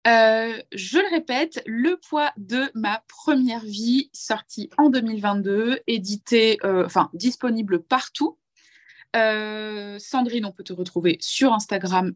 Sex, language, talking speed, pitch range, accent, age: female, French, 130 wpm, 200-255 Hz, French, 20-39